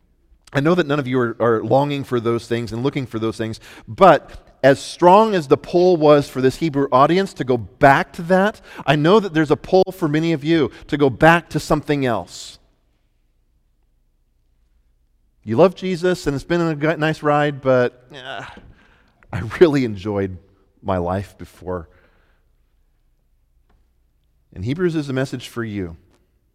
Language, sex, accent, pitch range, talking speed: English, male, American, 95-140 Hz, 160 wpm